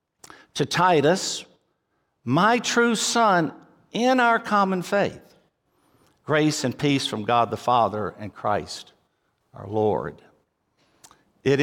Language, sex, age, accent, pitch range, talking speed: English, male, 60-79, American, 125-185 Hz, 110 wpm